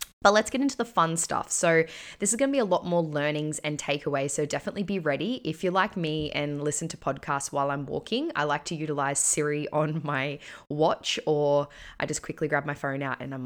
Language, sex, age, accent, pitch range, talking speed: English, female, 10-29, Australian, 150-185 Hz, 225 wpm